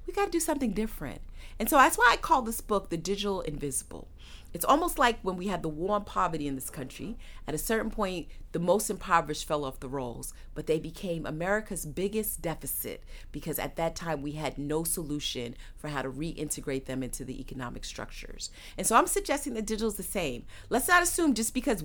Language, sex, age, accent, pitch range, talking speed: English, female, 30-49, American, 145-210 Hz, 215 wpm